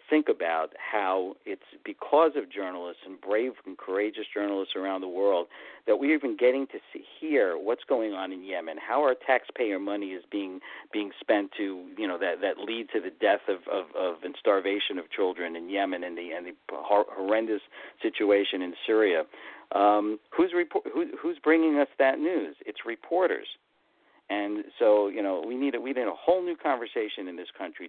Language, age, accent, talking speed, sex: English, 50-69, American, 185 wpm, male